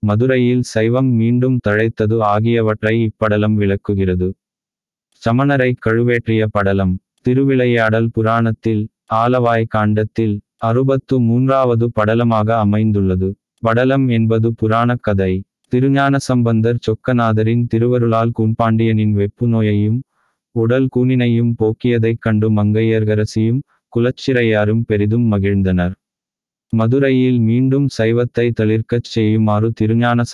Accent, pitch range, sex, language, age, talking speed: native, 105-120 Hz, male, Tamil, 20-39, 80 wpm